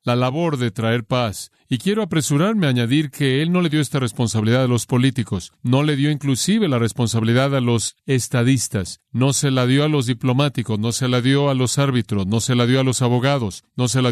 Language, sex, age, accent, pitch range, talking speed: Spanish, male, 40-59, Mexican, 120-145 Hz, 225 wpm